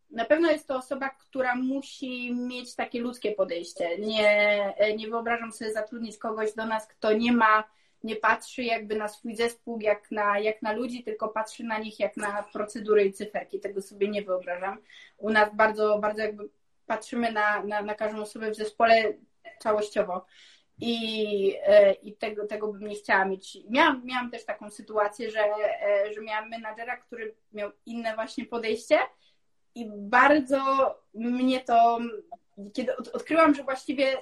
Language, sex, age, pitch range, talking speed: Polish, female, 20-39, 215-285 Hz, 160 wpm